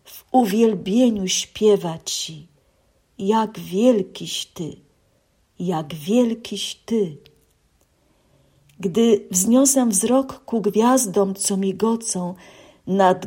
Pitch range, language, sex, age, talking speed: 180-215 Hz, Polish, female, 50-69, 80 wpm